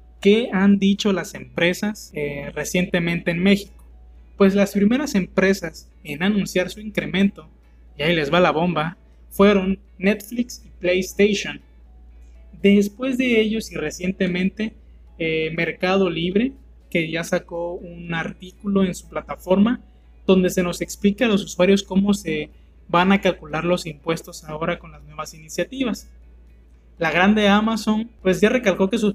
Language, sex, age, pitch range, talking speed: Spanish, male, 20-39, 160-200 Hz, 145 wpm